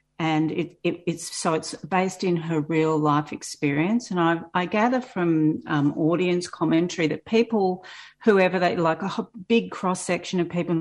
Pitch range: 150-180 Hz